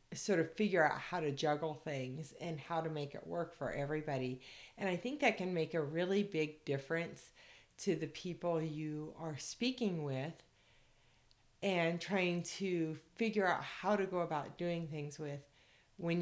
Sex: female